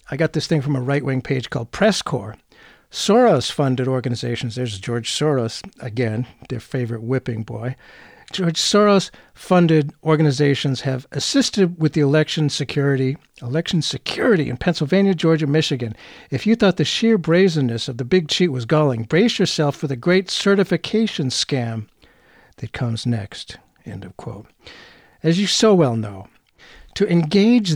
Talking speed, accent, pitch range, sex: 145 wpm, American, 125-180 Hz, male